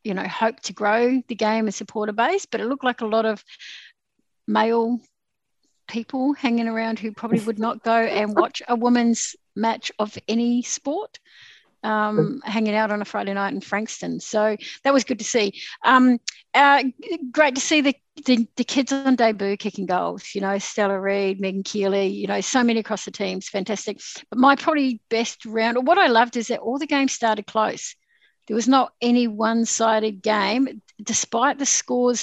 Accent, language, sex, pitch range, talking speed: Australian, English, female, 205-245 Hz, 190 wpm